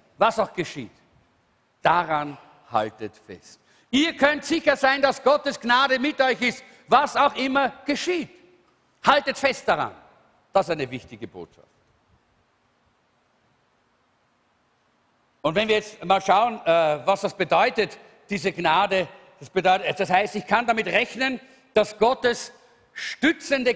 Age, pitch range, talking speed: 50-69, 165-250 Hz, 125 wpm